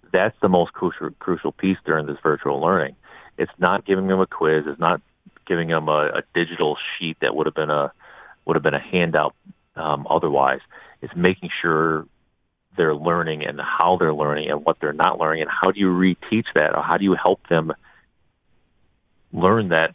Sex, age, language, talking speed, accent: male, 40-59, English, 190 wpm, American